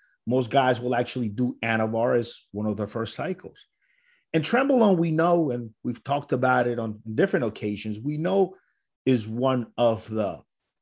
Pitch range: 115-160 Hz